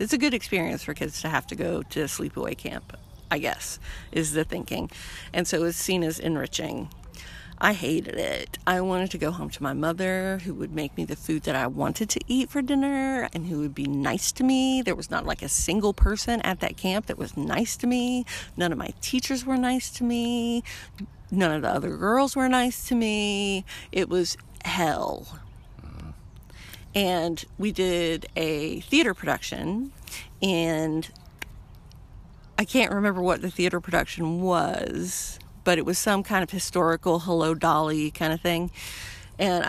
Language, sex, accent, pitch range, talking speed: English, female, American, 155-200 Hz, 180 wpm